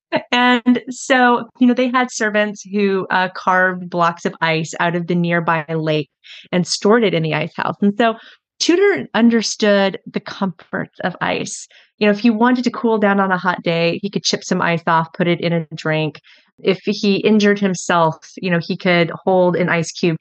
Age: 30-49